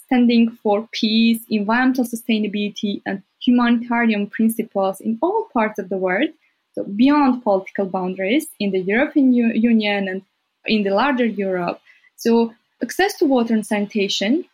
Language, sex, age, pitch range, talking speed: English, female, 20-39, 200-245 Hz, 140 wpm